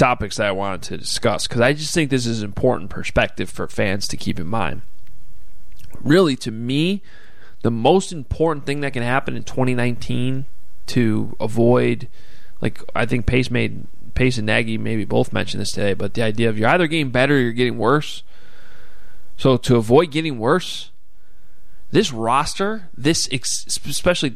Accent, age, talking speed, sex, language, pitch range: American, 20-39, 170 wpm, male, English, 115-150 Hz